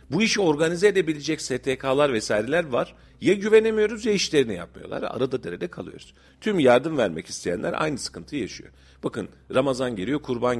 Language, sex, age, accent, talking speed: Turkish, male, 40-59, native, 145 wpm